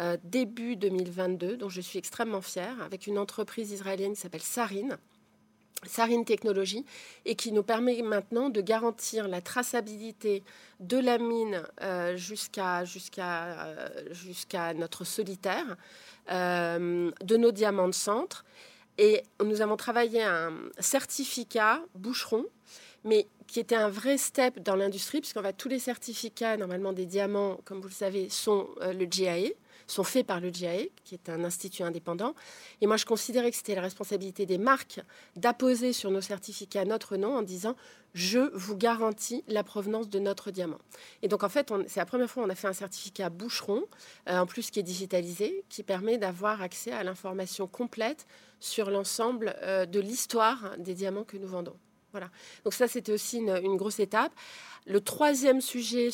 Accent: French